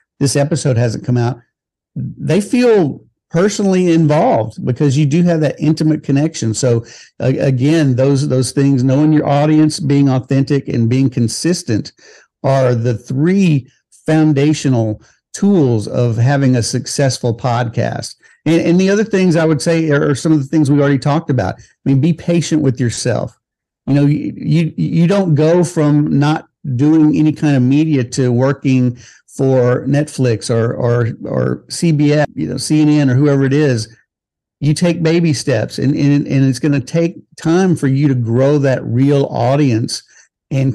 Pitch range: 130-155 Hz